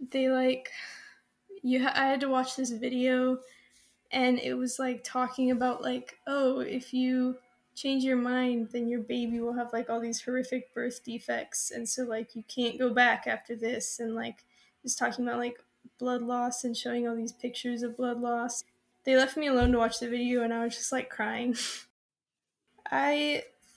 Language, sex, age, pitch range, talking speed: English, female, 10-29, 240-255 Hz, 185 wpm